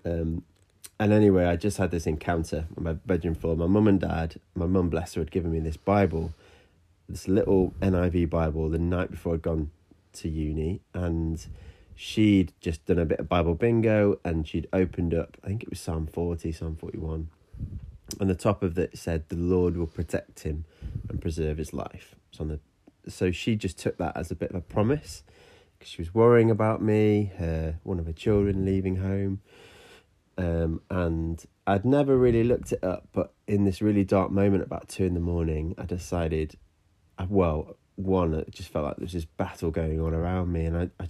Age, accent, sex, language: 30-49, British, male, English